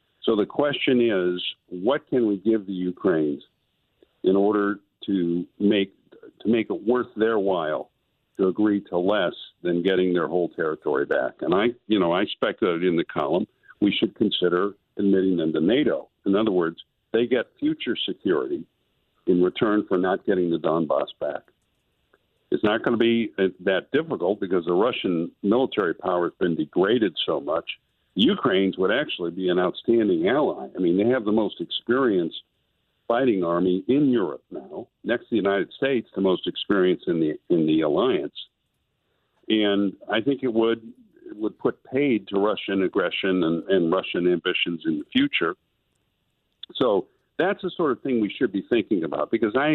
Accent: American